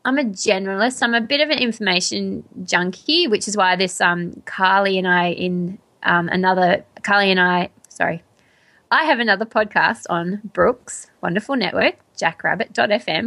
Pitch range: 180-220 Hz